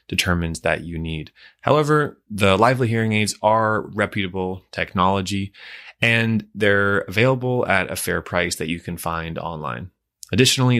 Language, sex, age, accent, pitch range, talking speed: English, male, 20-39, American, 95-115 Hz, 140 wpm